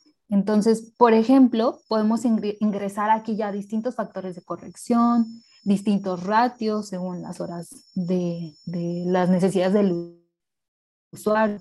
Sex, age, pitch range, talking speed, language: female, 20-39, 185-220 Hz, 115 wpm, English